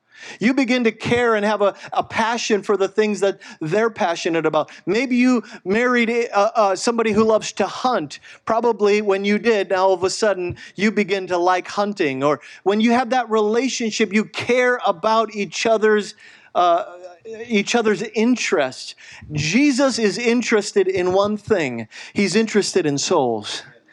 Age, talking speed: 40-59, 160 wpm